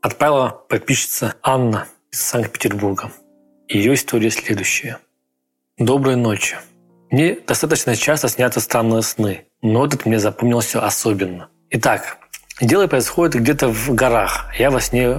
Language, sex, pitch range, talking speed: Russian, male, 105-125 Hz, 125 wpm